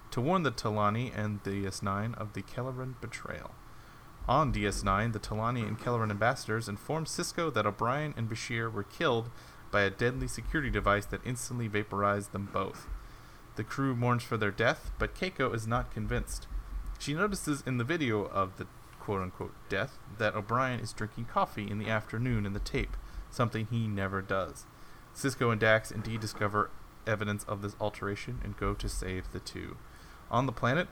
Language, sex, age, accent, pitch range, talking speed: English, male, 30-49, American, 100-120 Hz, 175 wpm